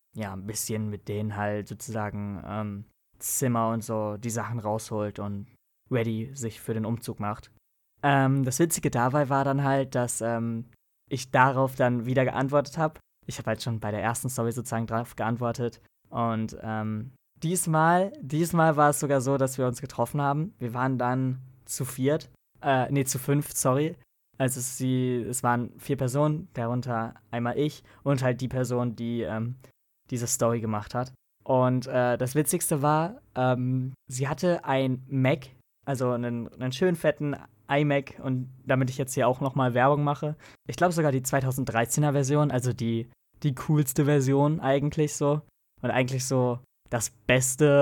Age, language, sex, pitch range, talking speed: 20-39, German, male, 115-140 Hz, 165 wpm